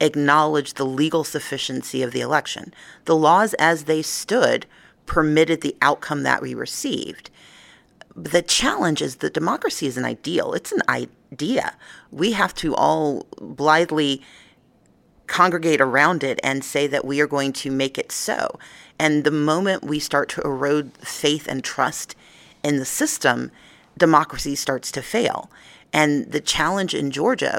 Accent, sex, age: American, female, 40-59